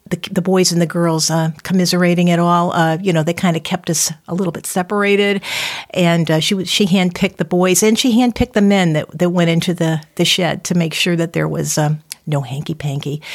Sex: female